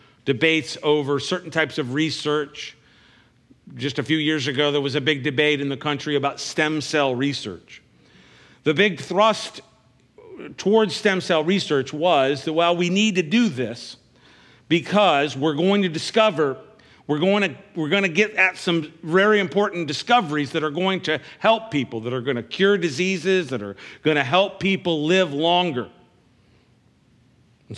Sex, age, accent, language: male, 50-69, American, English